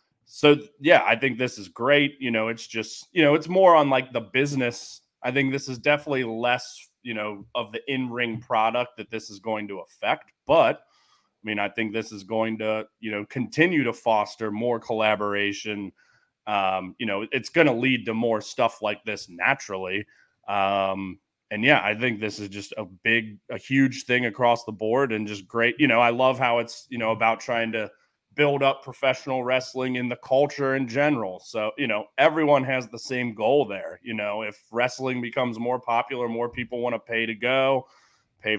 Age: 30-49